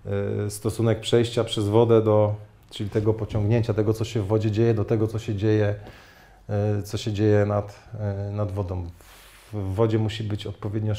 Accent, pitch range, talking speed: native, 105-115 Hz, 165 wpm